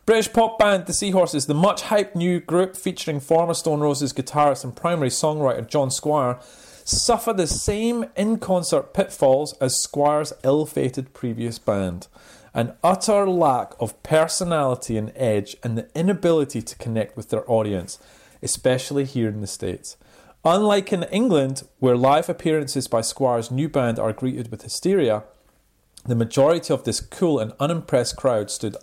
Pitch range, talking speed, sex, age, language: 115-180 Hz, 150 wpm, male, 30-49, English